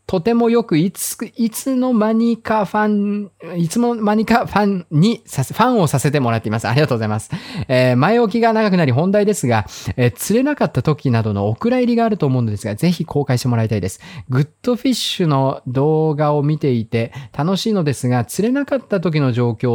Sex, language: male, Japanese